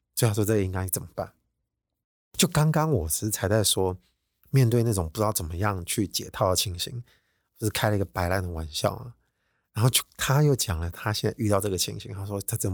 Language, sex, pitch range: Chinese, male, 95-120 Hz